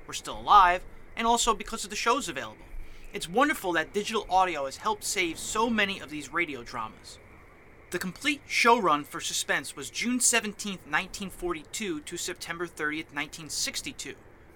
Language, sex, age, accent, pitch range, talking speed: English, male, 30-49, American, 160-215 Hz, 155 wpm